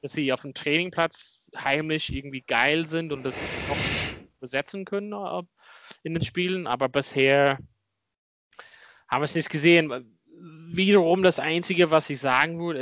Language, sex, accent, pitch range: German, male, German, 120-150 Hz